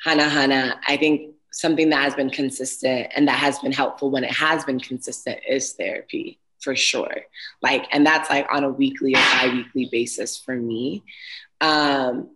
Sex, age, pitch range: female, 20-39, 140-175 Hz